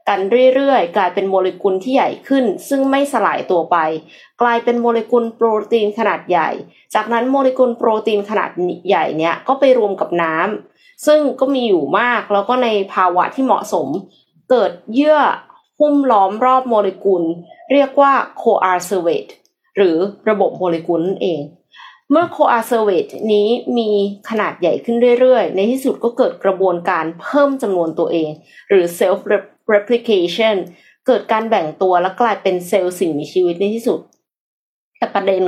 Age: 30-49